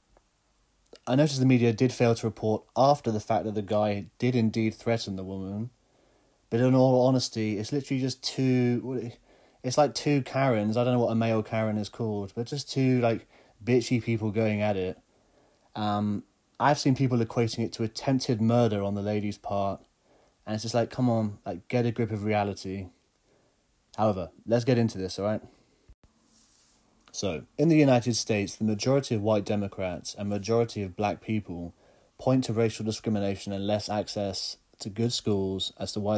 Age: 30-49